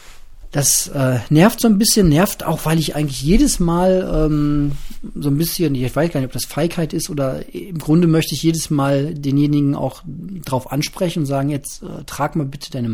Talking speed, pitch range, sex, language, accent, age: 205 wpm, 130-165 Hz, male, German, German, 40-59